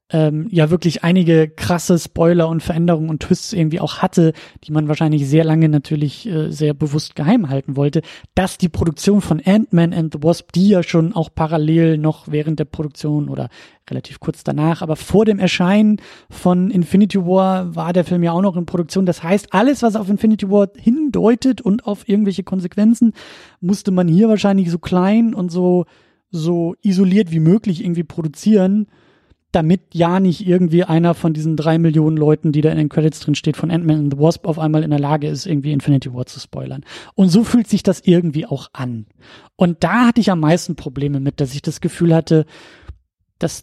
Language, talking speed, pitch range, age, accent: German, 195 wpm, 155-190 Hz, 30-49, German